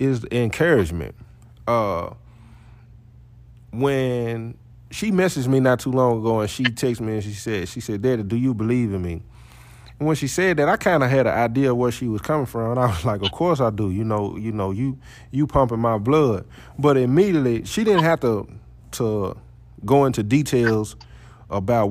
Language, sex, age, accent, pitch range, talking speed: English, male, 20-39, American, 110-130 Hz, 195 wpm